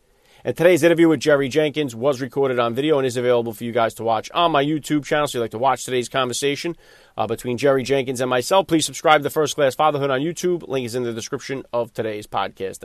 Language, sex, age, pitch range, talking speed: English, male, 40-59, 140-180 Hz, 240 wpm